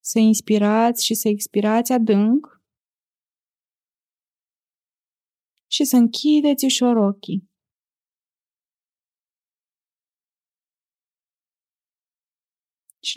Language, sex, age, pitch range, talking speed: Romanian, female, 20-39, 215-250 Hz, 55 wpm